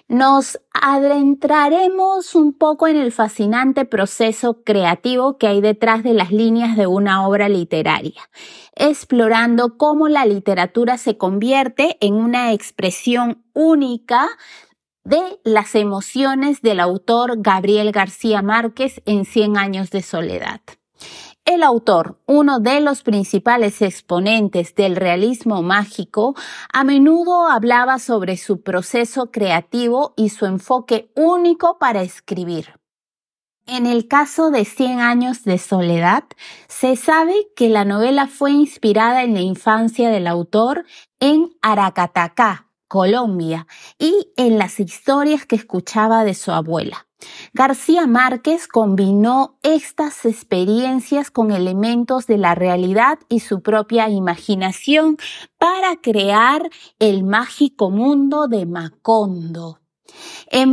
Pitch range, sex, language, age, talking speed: 200-275 Hz, female, Spanish, 30-49, 120 wpm